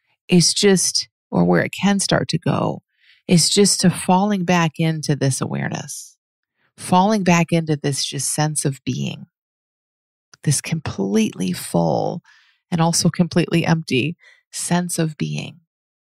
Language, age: English, 40-59